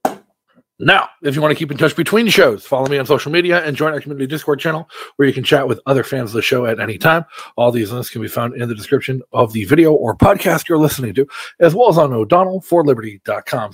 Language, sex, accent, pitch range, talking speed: English, male, American, 115-160 Hz, 245 wpm